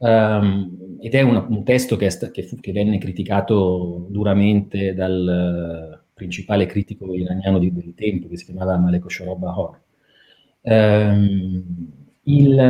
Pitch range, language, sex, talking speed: 95-115 Hz, Italian, male, 135 wpm